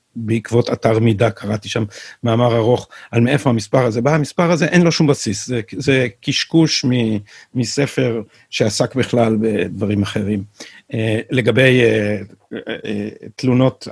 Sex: male